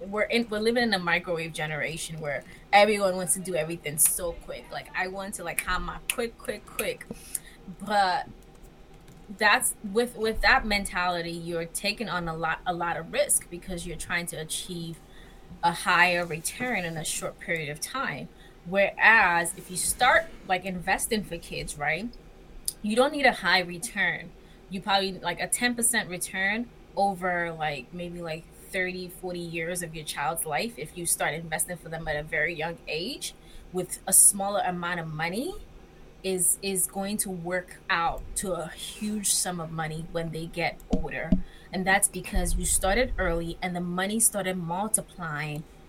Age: 20-39